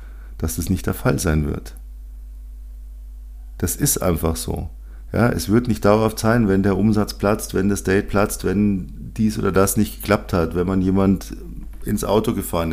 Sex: male